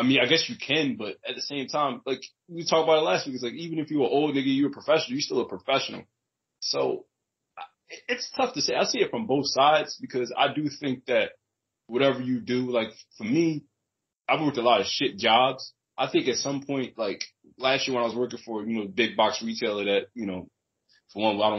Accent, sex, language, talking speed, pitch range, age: American, male, English, 240 wpm, 110-155 Hz, 20-39